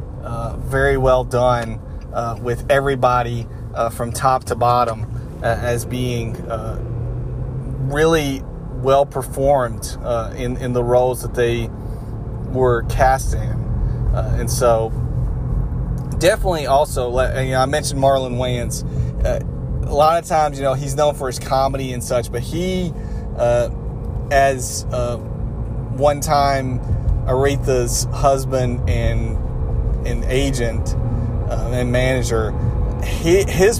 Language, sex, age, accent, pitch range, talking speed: English, male, 30-49, American, 115-135 Hz, 130 wpm